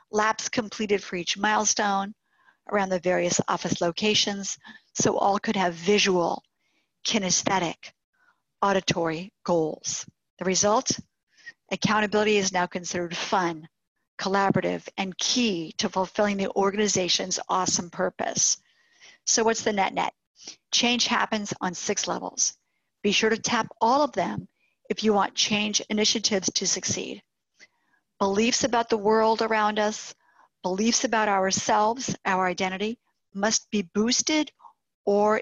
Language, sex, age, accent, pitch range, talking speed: English, female, 50-69, American, 185-215 Hz, 120 wpm